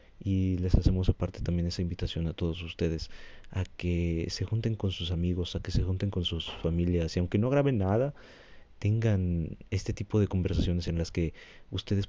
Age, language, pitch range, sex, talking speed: 30-49, Spanish, 85-100 Hz, male, 190 wpm